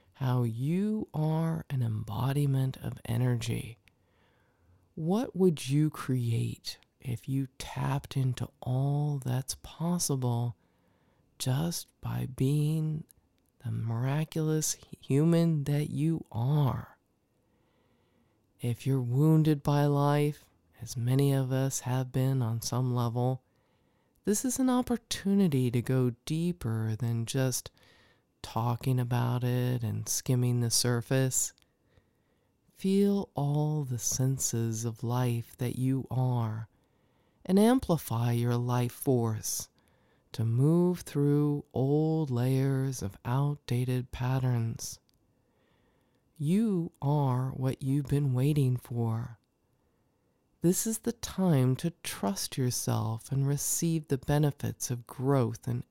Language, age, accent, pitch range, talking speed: English, 40-59, American, 120-145 Hz, 105 wpm